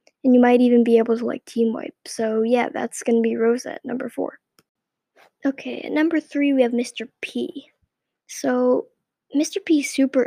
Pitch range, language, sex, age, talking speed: 235-275 Hz, English, female, 10-29, 175 wpm